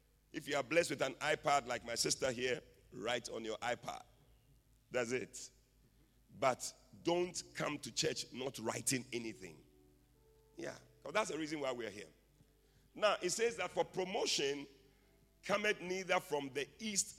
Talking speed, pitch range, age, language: 155 wpm, 120-155 Hz, 50-69, English